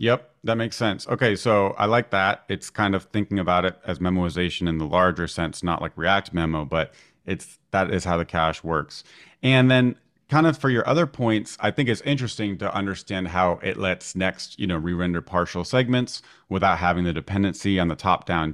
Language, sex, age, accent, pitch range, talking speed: English, male, 30-49, American, 85-105 Hz, 205 wpm